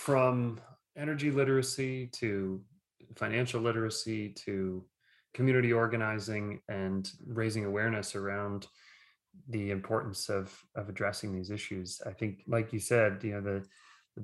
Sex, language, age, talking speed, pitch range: male, English, 30-49, 120 wpm, 95-115 Hz